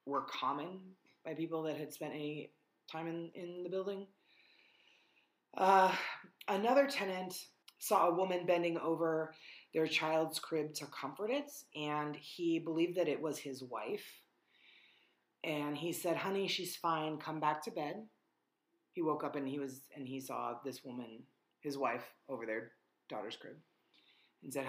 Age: 30-49